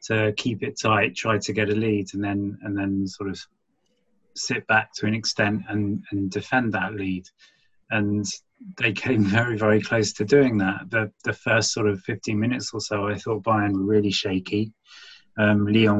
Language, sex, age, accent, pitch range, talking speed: English, male, 30-49, British, 100-110 Hz, 190 wpm